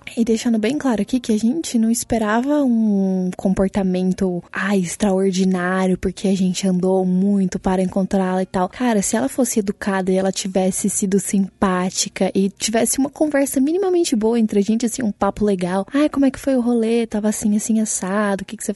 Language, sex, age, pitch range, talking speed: Portuguese, female, 20-39, 195-245 Hz, 190 wpm